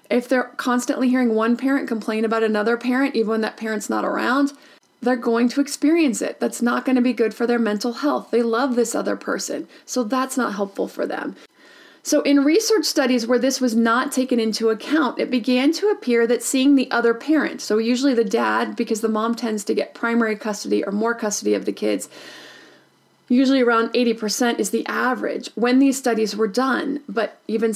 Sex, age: female, 30-49